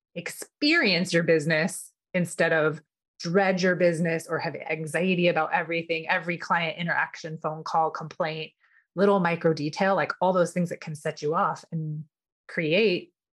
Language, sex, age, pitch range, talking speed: English, female, 30-49, 160-200 Hz, 150 wpm